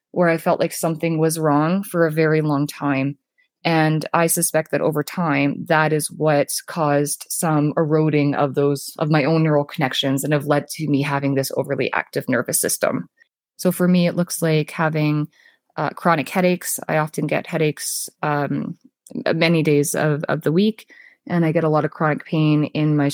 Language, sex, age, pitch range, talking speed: English, female, 20-39, 145-165 Hz, 190 wpm